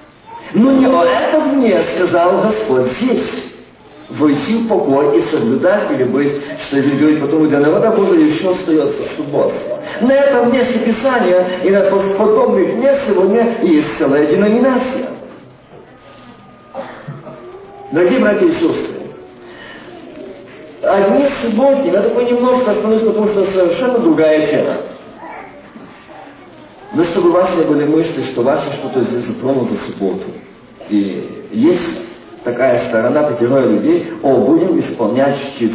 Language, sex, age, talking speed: Russian, male, 50-69, 125 wpm